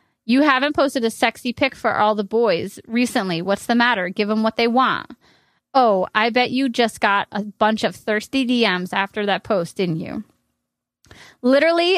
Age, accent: 20-39, American